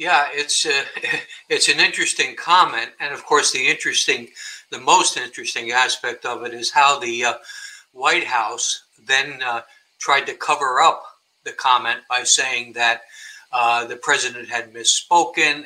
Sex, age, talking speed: male, 60-79, 155 wpm